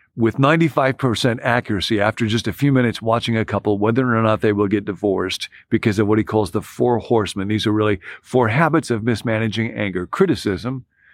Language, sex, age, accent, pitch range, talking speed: English, male, 50-69, American, 100-115 Hz, 190 wpm